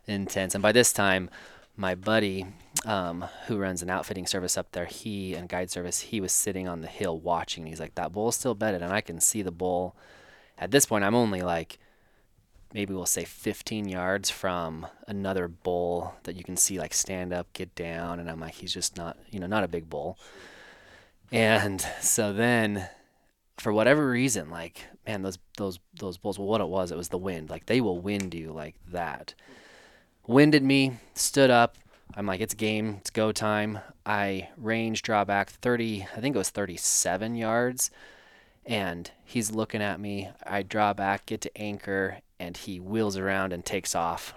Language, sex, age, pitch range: English, male, 20-39, 90-110 Hz